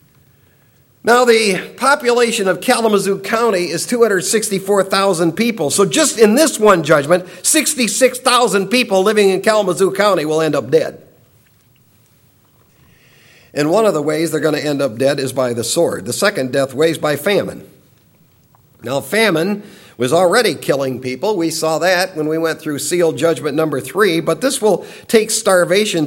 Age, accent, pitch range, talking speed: 50-69, American, 155-200 Hz, 160 wpm